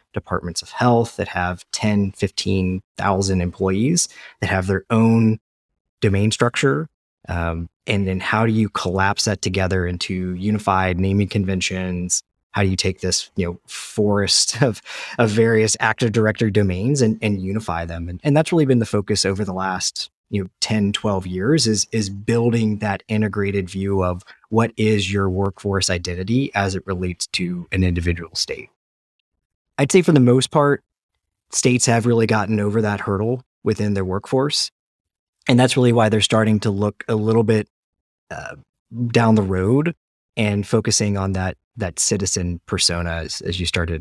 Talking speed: 165 wpm